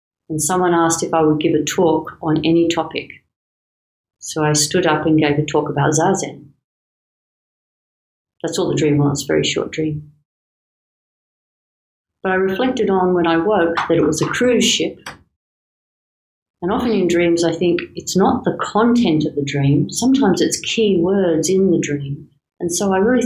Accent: Australian